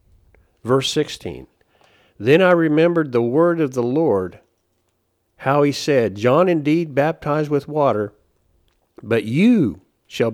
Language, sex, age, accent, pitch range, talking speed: English, male, 50-69, American, 105-140 Hz, 120 wpm